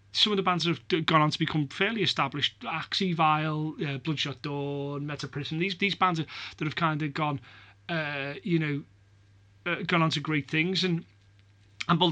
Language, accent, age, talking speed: English, British, 30-49, 190 wpm